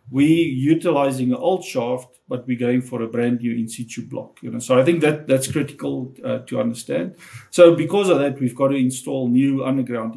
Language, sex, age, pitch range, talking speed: English, male, 50-69, 120-140 Hz, 190 wpm